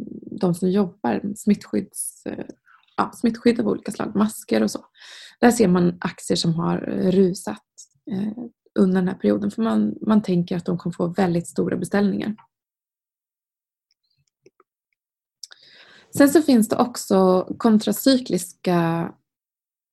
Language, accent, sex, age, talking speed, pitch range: Swedish, native, female, 20-39, 115 wpm, 175-215 Hz